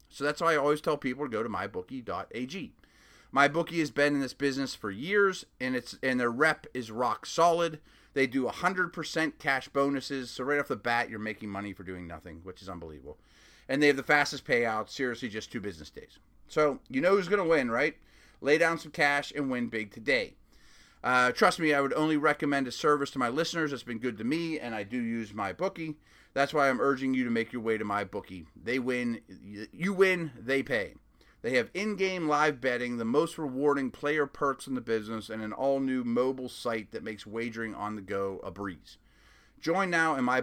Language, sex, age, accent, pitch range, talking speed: English, male, 30-49, American, 115-155 Hz, 215 wpm